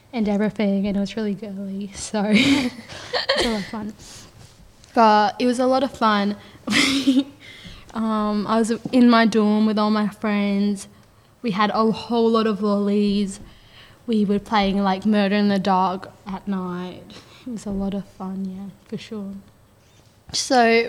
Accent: Australian